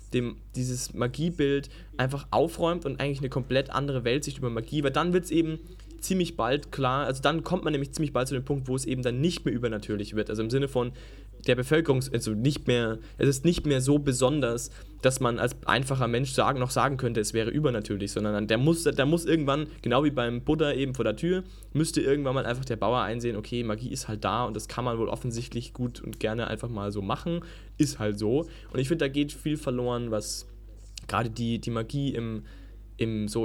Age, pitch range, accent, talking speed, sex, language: 10-29, 115-140 Hz, German, 220 wpm, male, German